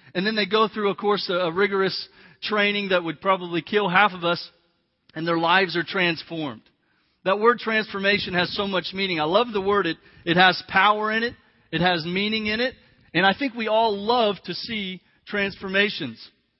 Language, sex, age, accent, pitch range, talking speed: English, male, 40-59, American, 175-210 Hz, 190 wpm